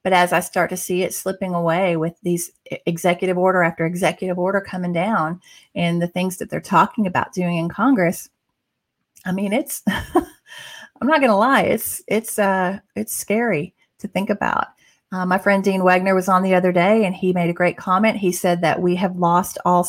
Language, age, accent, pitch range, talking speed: English, 30-49, American, 170-195 Hz, 200 wpm